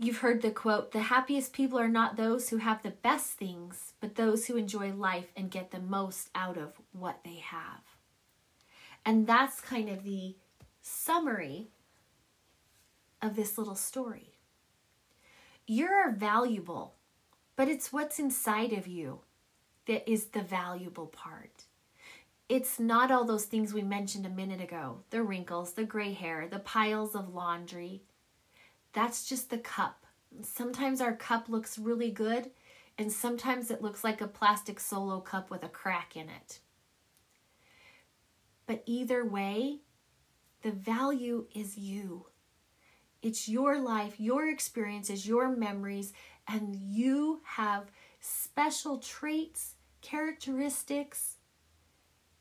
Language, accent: English, American